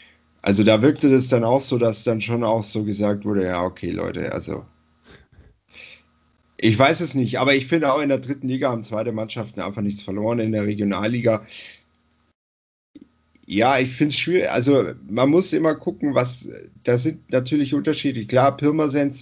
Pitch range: 105-135 Hz